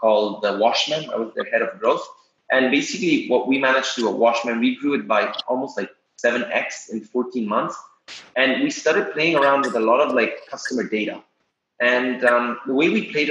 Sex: male